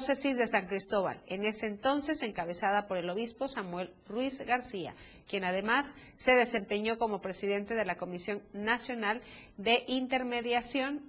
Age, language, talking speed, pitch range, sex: 40-59, Spanish, 135 wpm, 200-255 Hz, female